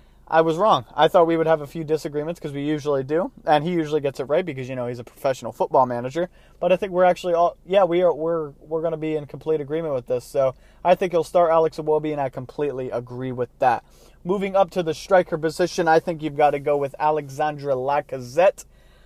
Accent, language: American, English